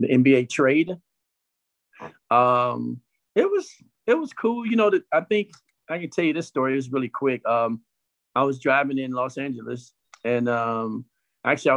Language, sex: English, male